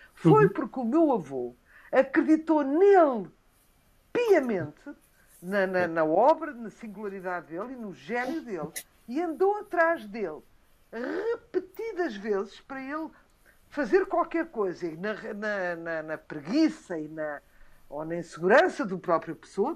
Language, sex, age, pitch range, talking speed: Portuguese, female, 50-69, 180-300 Hz, 120 wpm